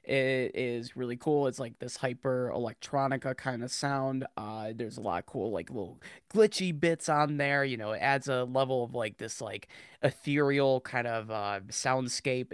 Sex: male